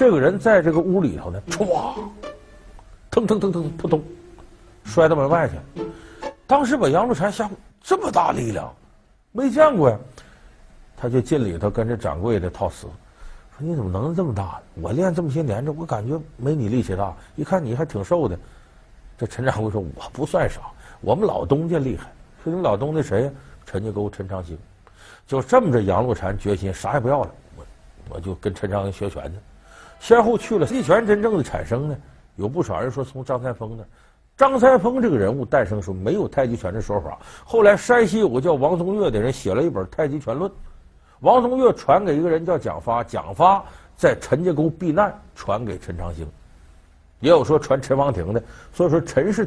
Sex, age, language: male, 50-69, Chinese